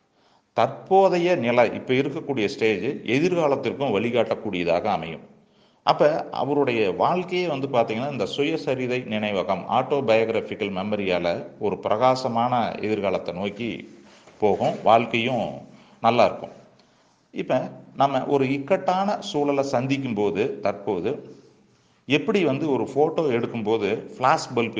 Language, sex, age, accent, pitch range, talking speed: Tamil, male, 40-59, native, 105-140 Hz, 100 wpm